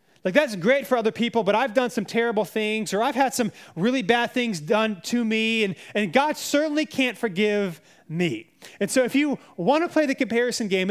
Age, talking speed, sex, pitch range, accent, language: 30-49, 215 wpm, male, 200-260 Hz, American, English